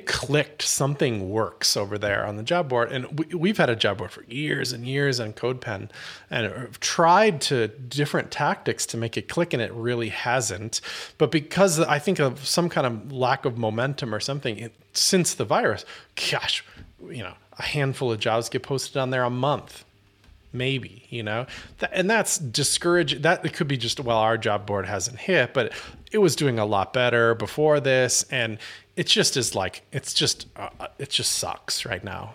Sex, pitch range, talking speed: male, 110-150 Hz, 195 wpm